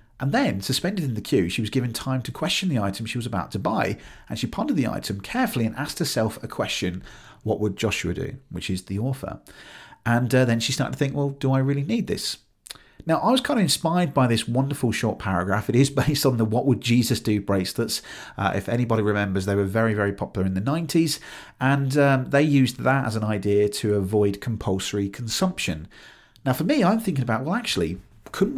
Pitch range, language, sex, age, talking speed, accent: 105-145 Hz, English, male, 40-59, 220 wpm, British